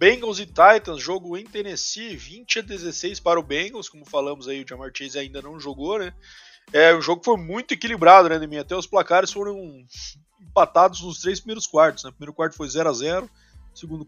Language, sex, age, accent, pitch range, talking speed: Portuguese, male, 20-39, Brazilian, 135-175 Hz, 210 wpm